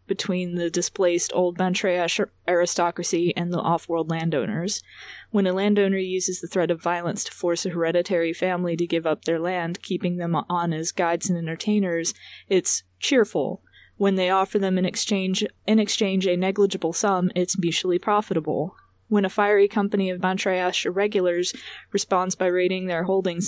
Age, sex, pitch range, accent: 20-39, female, 170-190 Hz, American